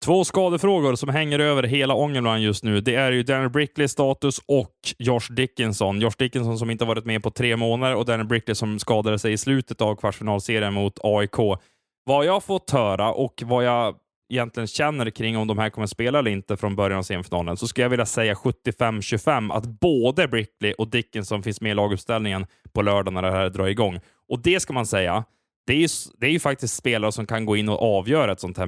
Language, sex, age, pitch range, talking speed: Swedish, male, 20-39, 105-130 Hz, 215 wpm